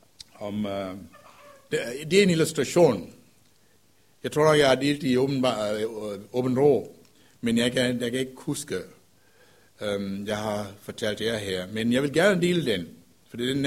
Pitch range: 120-165 Hz